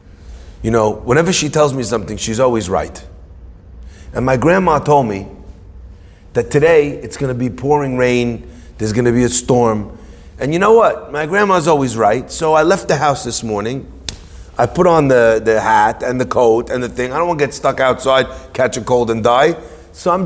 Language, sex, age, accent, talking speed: English, male, 30-49, American, 200 wpm